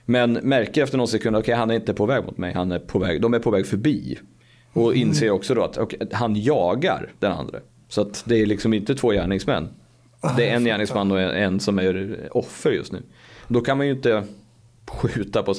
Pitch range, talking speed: 100-125 Hz, 230 wpm